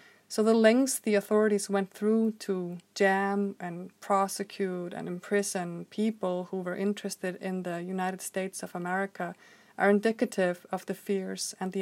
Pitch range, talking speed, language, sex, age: 180-210 Hz, 150 wpm, English, female, 30-49